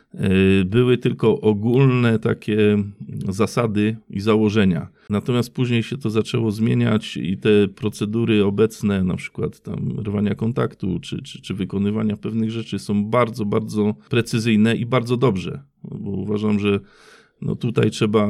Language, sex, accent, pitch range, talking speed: Polish, male, native, 100-115 Hz, 130 wpm